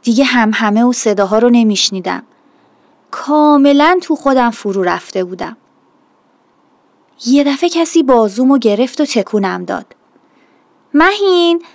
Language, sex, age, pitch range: Persian, female, 30-49, 220-320 Hz